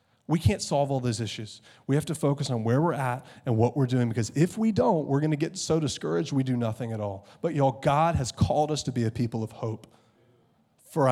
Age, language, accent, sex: 30-49, English, American, male